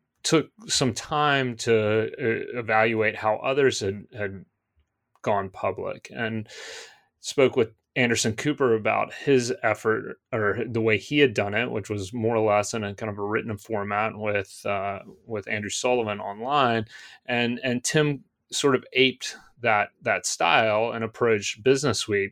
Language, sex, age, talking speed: English, male, 30-49, 150 wpm